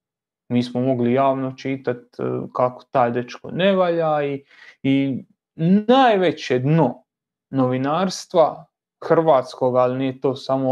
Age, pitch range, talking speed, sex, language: 30-49, 125-155 Hz, 110 wpm, male, Croatian